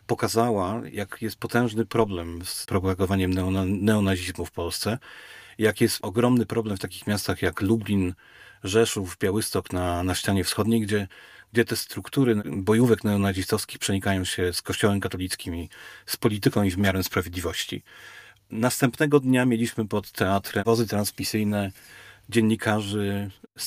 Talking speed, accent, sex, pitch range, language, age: 130 wpm, native, male, 95-115 Hz, Polish, 40-59